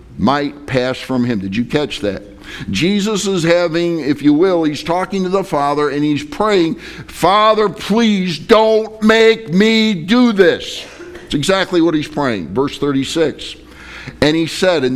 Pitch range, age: 135-195 Hz, 50-69